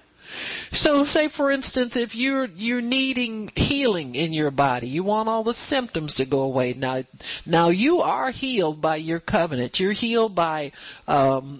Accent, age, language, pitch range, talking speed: American, 50-69, English, 160-240 Hz, 165 wpm